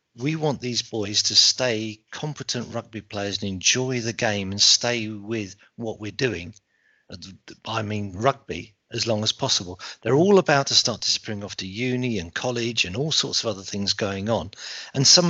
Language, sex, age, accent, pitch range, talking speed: English, male, 50-69, British, 105-125 Hz, 190 wpm